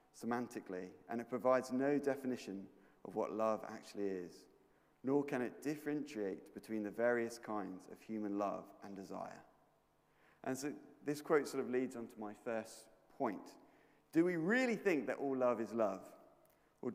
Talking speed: 165 wpm